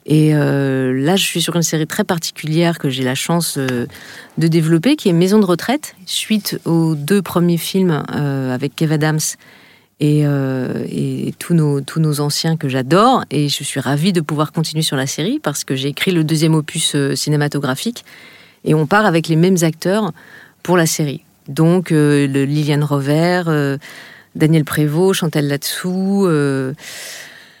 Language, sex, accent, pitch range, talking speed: French, female, French, 150-185 Hz, 180 wpm